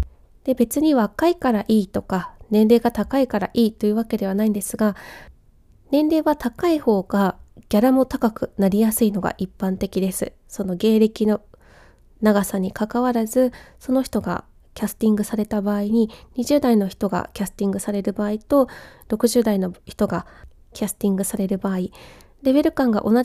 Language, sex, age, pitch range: Japanese, female, 20-39, 200-255 Hz